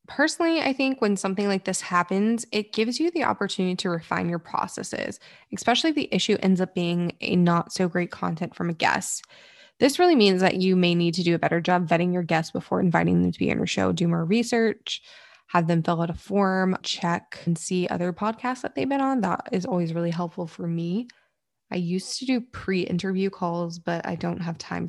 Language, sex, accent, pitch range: English, female, American, 175-215 Hz